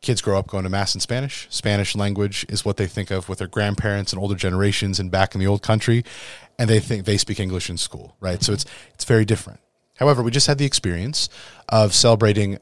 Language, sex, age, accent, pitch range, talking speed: English, male, 30-49, American, 95-115 Hz, 235 wpm